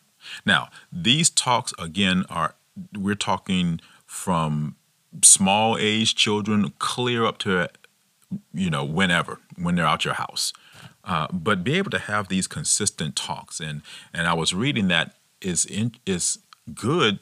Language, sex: English, male